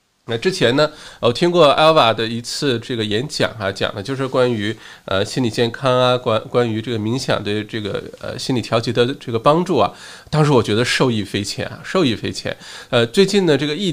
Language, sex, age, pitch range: Chinese, male, 20-39, 115-155 Hz